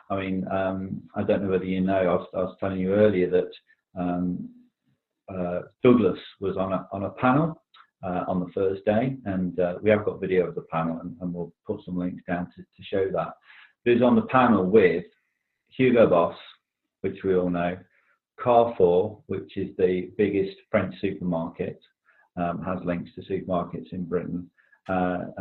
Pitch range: 90-105 Hz